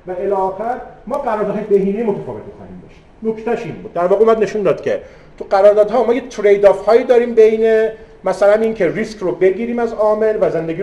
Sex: male